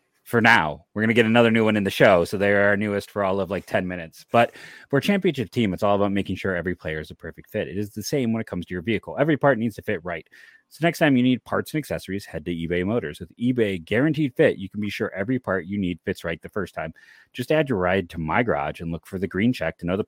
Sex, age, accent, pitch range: male, 30-49, American, 90-120 Hz